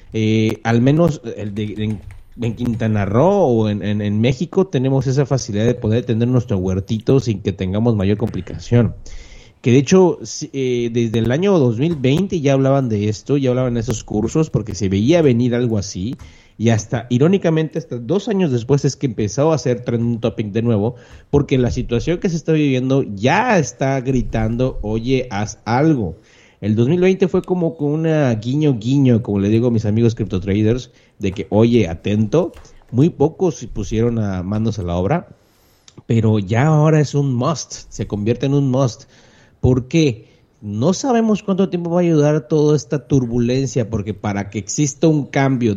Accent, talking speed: Mexican, 180 wpm